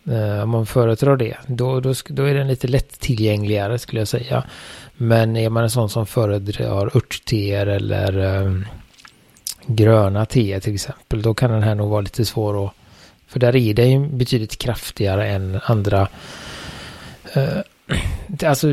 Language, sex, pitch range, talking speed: Swedish, male, 105-125 Hz, 145 wpm